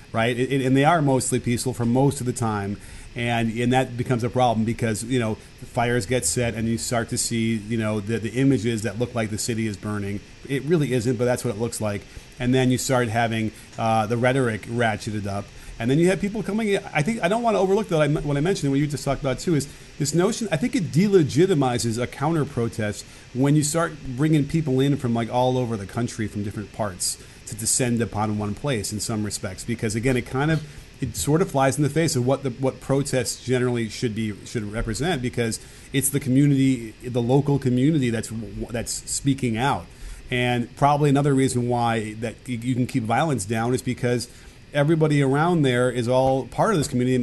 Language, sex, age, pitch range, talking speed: English, male, 30-49, 115-135 Hz, 215 wpm